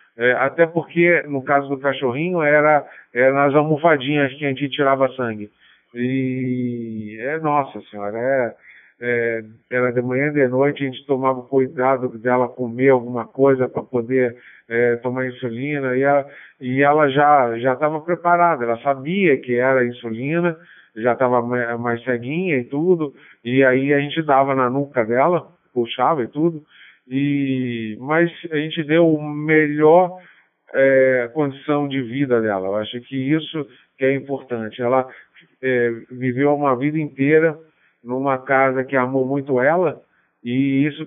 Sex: male